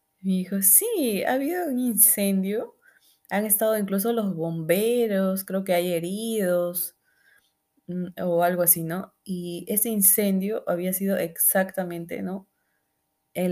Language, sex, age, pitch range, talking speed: Spanish, female, 20-39, 165-195 Hz, 125 wpm